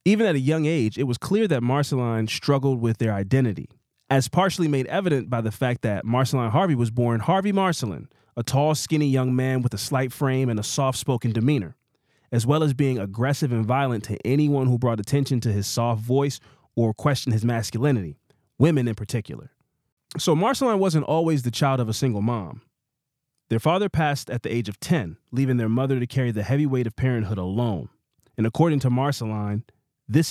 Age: 30-49